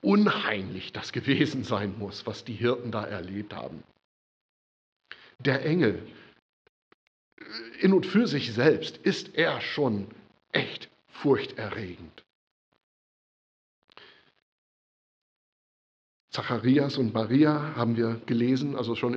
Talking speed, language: 95 wpm, German